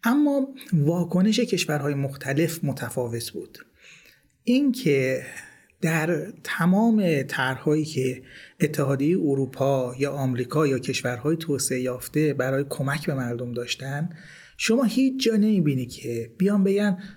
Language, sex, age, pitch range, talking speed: Persian, male, 30-49, 130-175 Hz, 110 wpm